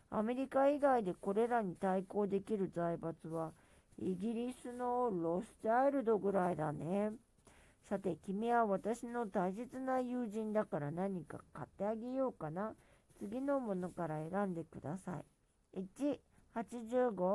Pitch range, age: 180-245 Hz, 50-69